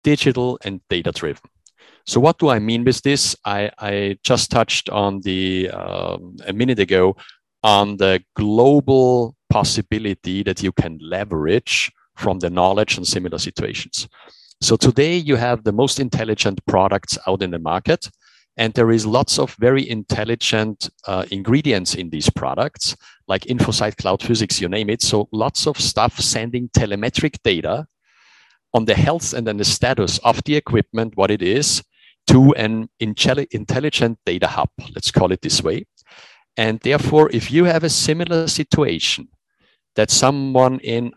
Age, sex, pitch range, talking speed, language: 50-69, male, 100-135 Hz, 155 wpm, English